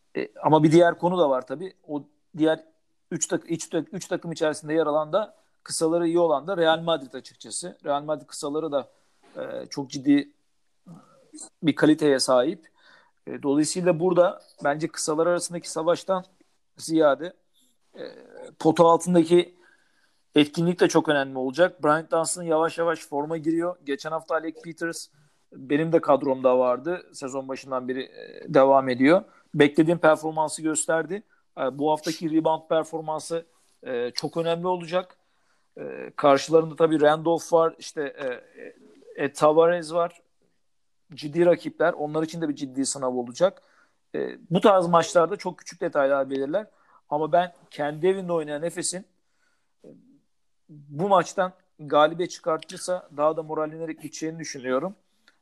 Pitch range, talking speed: 150-175 Hz, 130 wpm